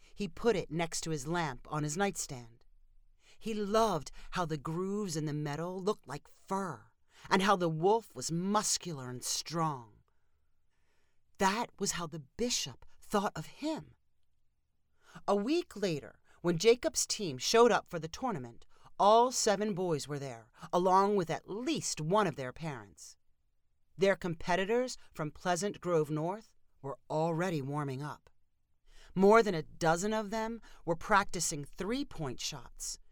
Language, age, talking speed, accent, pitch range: English, 40-59, 145 wpm, American, 140-200 Hz